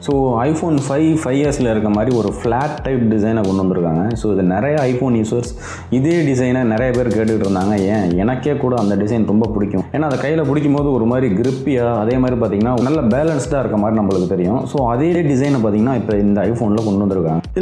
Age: 20-39